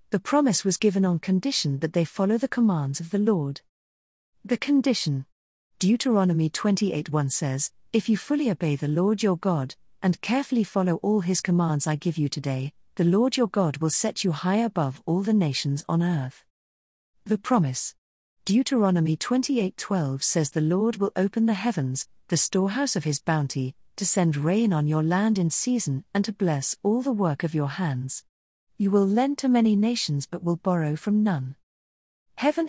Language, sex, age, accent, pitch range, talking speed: English, female, 40-59, British, 150-210 Hz, 175 wpm